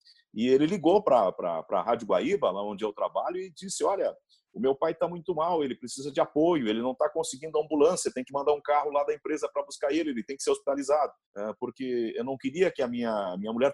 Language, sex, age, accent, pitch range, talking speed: Portuguese, male, 40-59, Brazilian, 135-180 Hz, 235 wpm